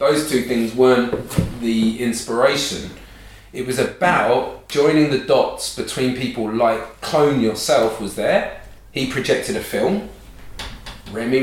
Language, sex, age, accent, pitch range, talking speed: English, male, 30-49, British, 115-150 Hz, 125 wpm